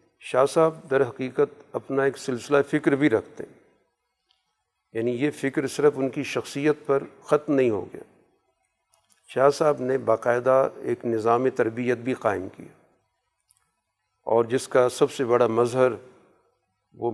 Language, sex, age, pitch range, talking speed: Urdu, male, 50-69, 115-135 Hz, 145 wpm